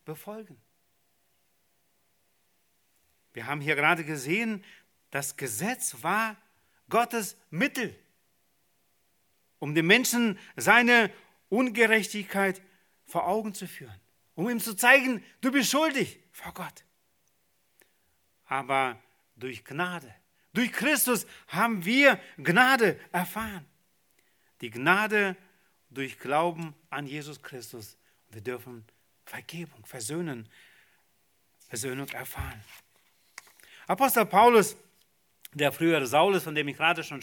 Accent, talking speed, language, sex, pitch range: German, 100 wpm, German, male, 140-215 Hz